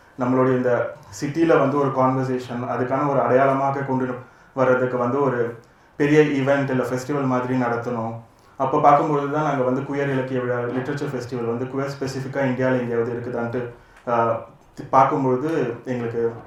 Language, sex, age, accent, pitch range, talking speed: Tamil, male, 30-49, native, 125-140 Hz, 130 wpm